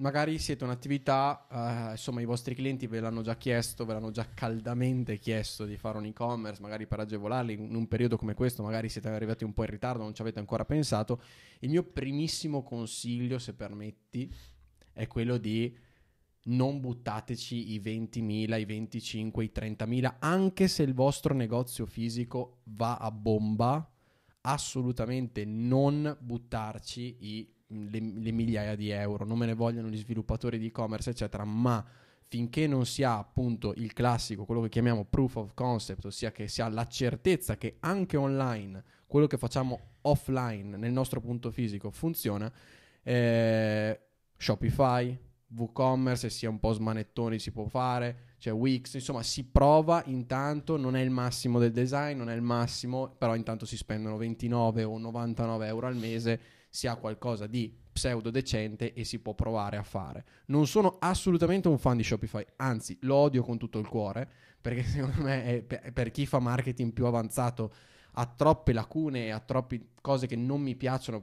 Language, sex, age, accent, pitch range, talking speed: Italian, male, 20-39, native, 110-130 Hz, 170 wpm